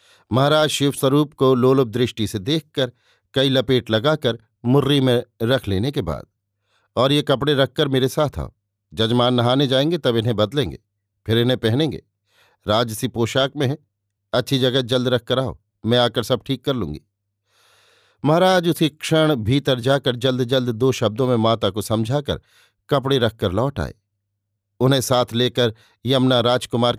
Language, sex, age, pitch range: Hindi, male, 50-69, 105-135 Hz